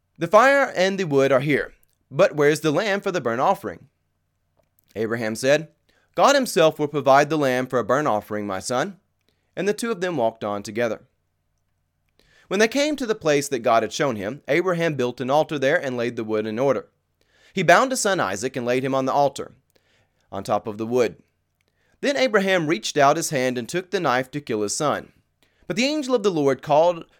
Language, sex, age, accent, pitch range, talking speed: English, male, 30-49, American, 110-180 Hz, 215 wpm